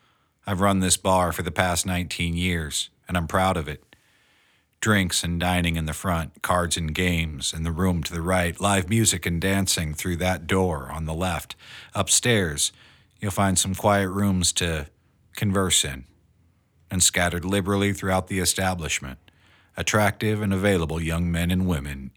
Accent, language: American, English